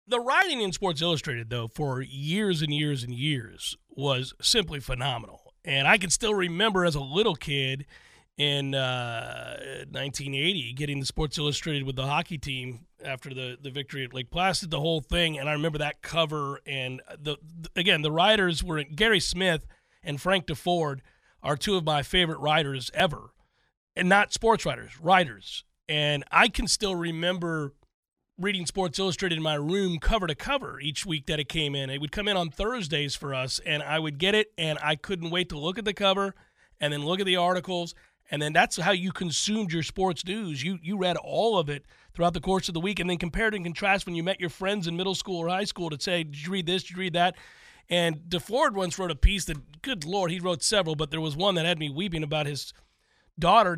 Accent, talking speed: American, 215 wpm